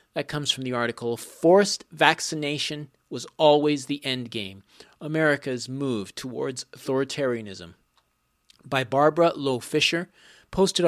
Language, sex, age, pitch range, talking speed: English, male, 40-59, 120-150 Hz, 115 wpm